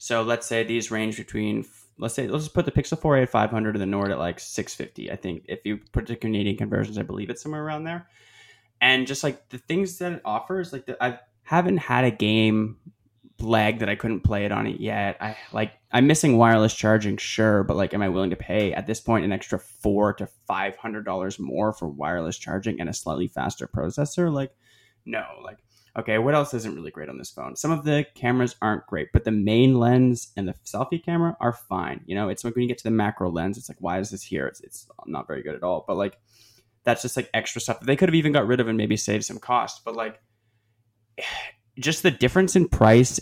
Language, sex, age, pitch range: English, male, 20-39, 105-125 Hz